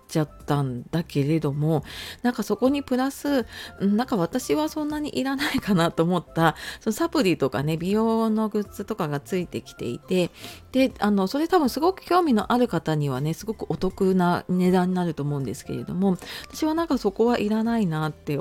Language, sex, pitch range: Japanese, female, 160-225 Hz